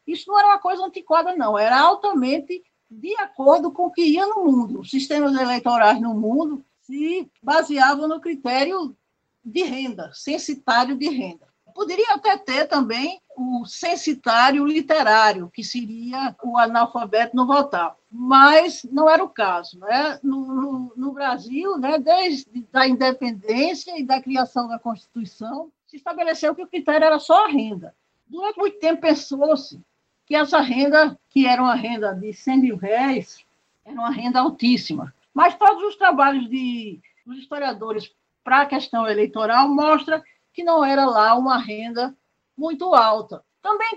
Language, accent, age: Portuguese, Brazilian, 60-79